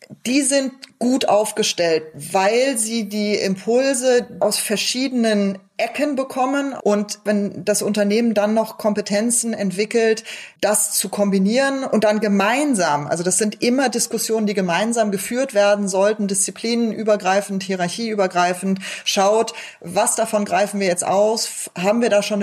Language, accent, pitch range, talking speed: German, German, 195-230 Hz, 130 wpm